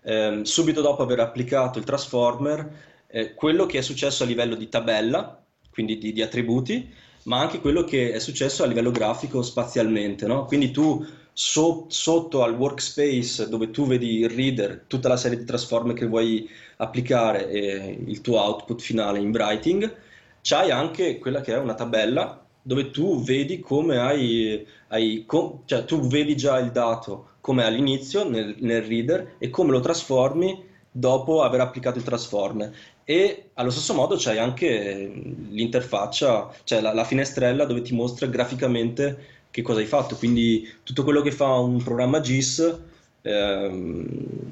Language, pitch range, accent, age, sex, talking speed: Italian, 115-140 Hz, native, 20-39, male, 160 wpm